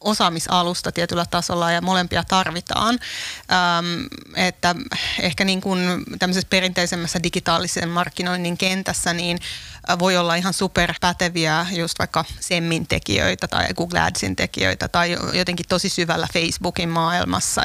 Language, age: Finnish, 30-49